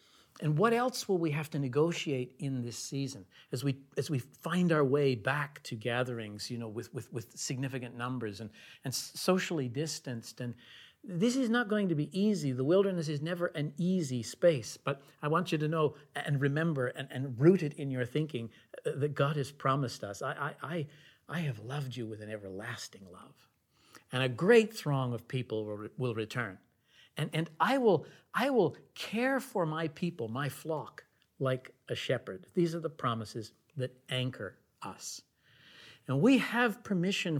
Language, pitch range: English, 120-155 Hz